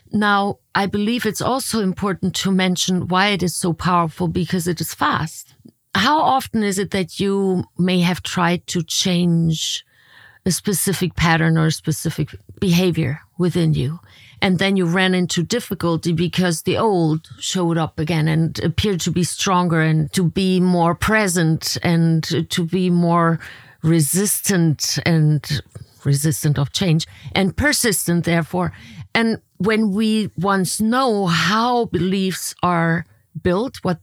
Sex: female